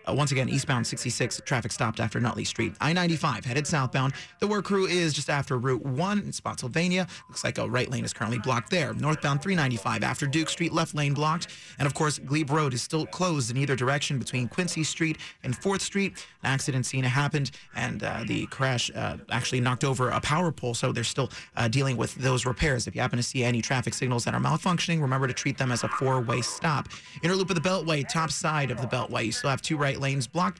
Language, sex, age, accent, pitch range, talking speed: English, male, 30-49, American, 130-165 Hz, 225 wpm